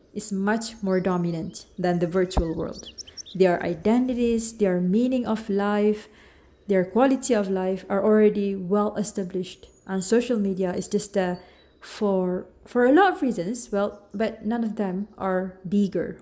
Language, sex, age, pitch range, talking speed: Malay, female, 30-49, 185-220 Hz, 150 wpm